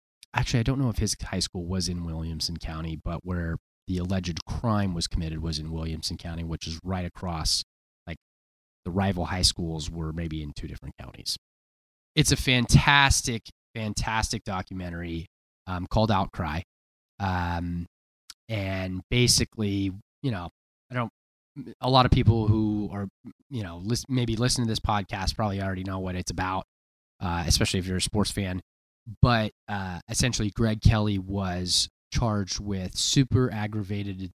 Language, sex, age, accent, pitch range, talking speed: English, male, 20-39, American, 85-110 Hz, 155 wpm